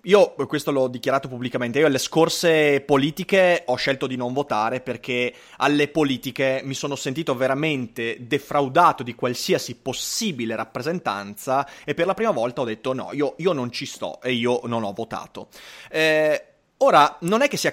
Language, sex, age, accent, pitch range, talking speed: Italian, male, 30-49, native, 130-175 Hz, 170 wpm